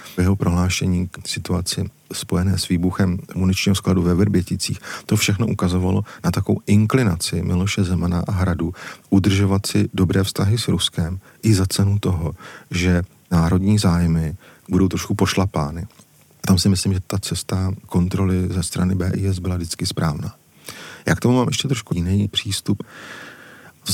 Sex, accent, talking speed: male, native, 150 wpm